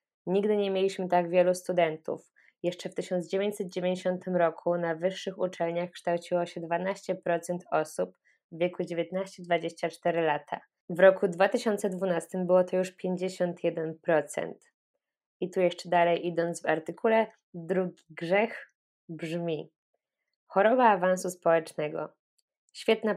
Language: Polish